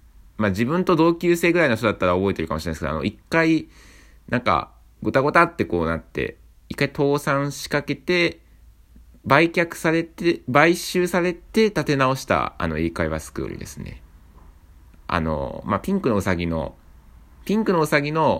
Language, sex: Japanese, male